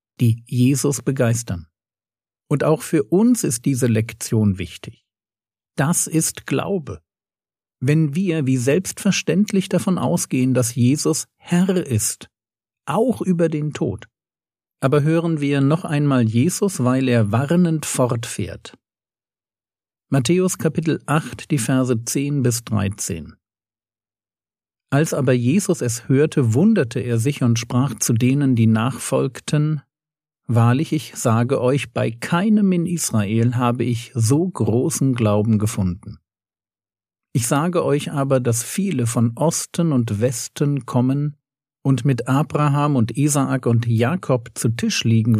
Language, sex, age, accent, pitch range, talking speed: German, male, 50-69, German, 115-155 Hz, 125 wpm